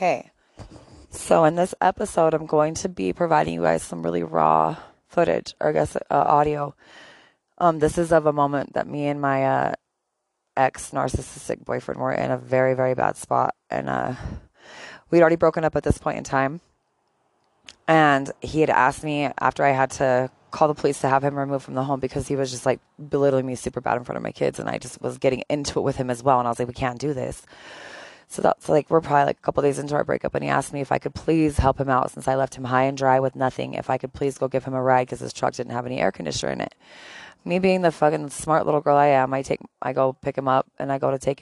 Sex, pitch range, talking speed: female, 130-150 Hz, 255 wpm